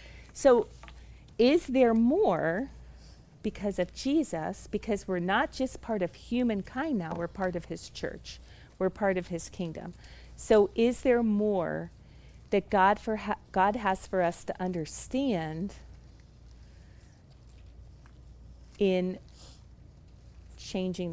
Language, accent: English, American